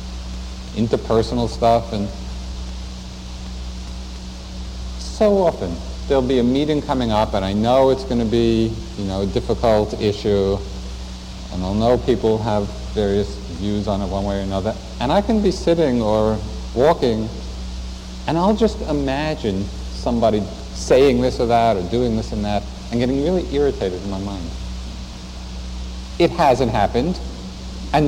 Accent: American